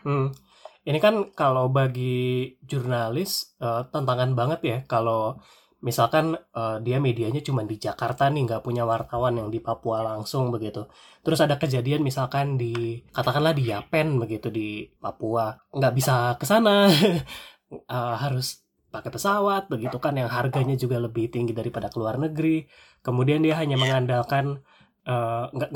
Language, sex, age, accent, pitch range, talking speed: Indonesian, male, 20-39, native, 115-145 Hz, 140 wpm